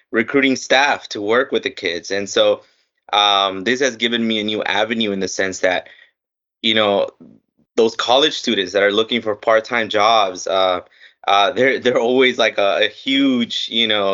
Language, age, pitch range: English, 20-39, 100-115 Hz